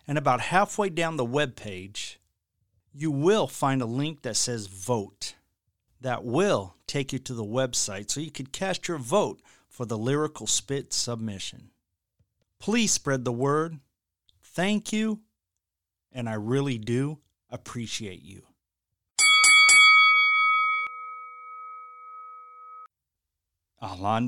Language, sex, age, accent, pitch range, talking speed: English, male, 50-69, American, 95-145 Hz, 110 wpm